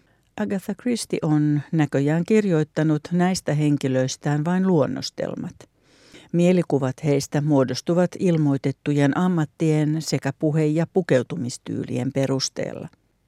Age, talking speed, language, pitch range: 60-79, 85 wpm, English, 140-165 Hz